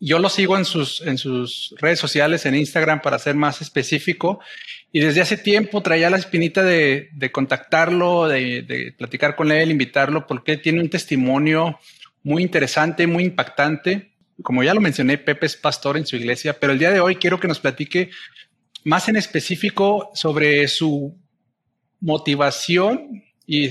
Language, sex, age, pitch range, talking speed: Spanish, male, 40-59, 140-170 Hz, 160 wpm